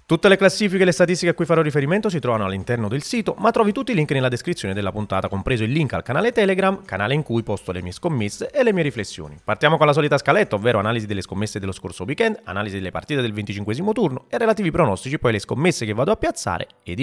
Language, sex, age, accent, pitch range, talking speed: Italian, male, 30-49, native, 95-140 Hz, 245 wpm